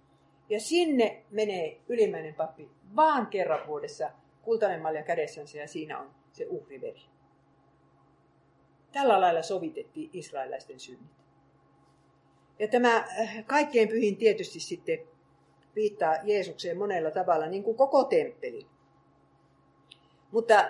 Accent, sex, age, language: native, female, 50-69, Finnish